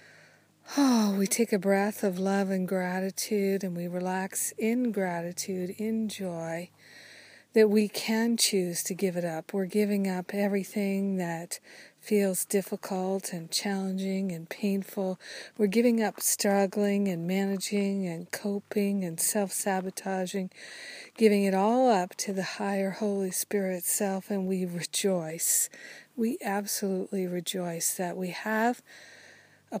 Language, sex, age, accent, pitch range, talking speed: English, female, 50-69, American, 185-205 Hz, 130 wpm